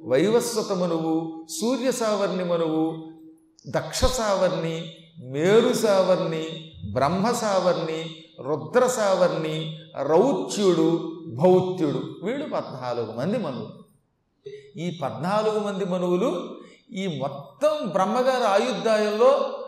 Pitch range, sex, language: 170-230 Hz, male, Telugu